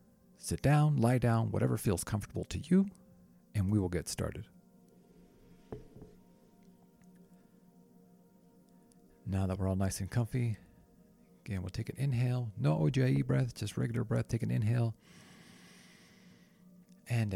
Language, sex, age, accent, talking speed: English, male, 40-59, American, 125 wpm